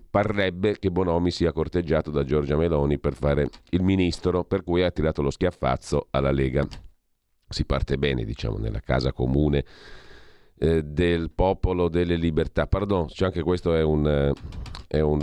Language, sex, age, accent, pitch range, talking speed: Italian, male, 40-59, native, 75-95 Hz, 150 wpm